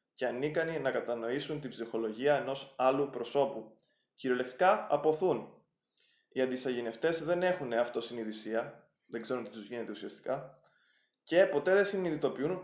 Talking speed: 125 wpm